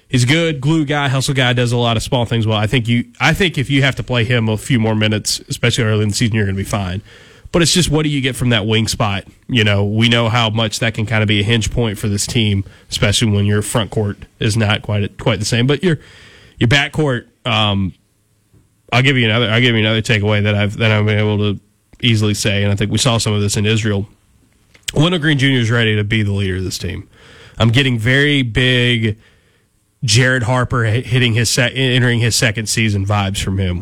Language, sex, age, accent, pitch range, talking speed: English, male, 30-49, American, 105-125 Hz, 245 wpm